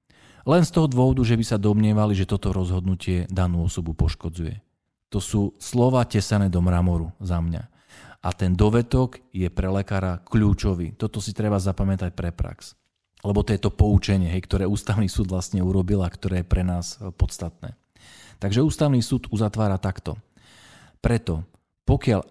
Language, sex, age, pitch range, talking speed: Slovak, male, 40-59, 90-115 Hz, 155 wpm